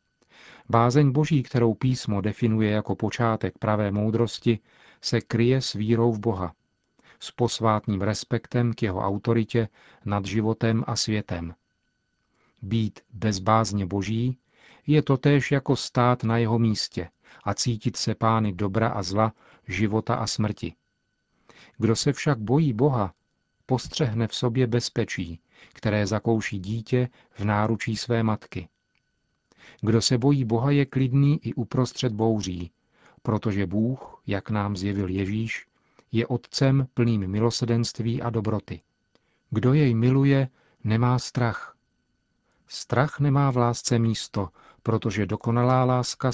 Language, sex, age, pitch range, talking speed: Czech, male, 40-59, 105-120 Hz, 125 wpm